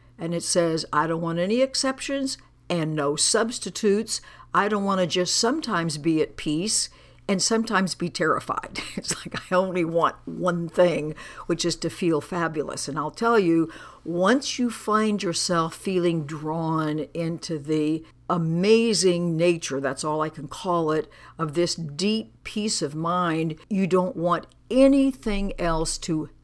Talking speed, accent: 155 wpm, American